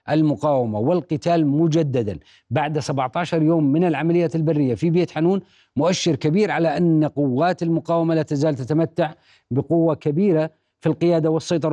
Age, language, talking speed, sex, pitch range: 40-59, Arabic, 135 wpm, male, 140-170 Hz